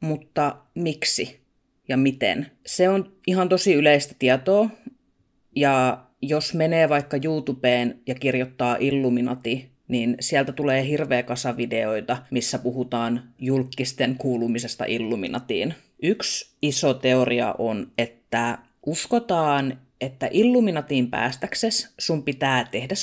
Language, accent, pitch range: Finnish, native, 125-185 Hz